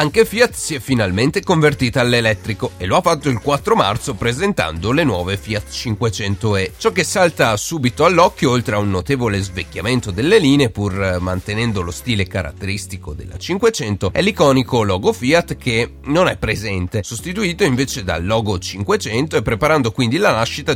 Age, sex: 30-49, male